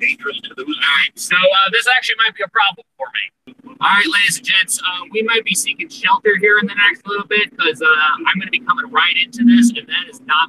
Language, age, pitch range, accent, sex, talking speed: English, 30-49, 165-235 Hz, American, male, 265 wpm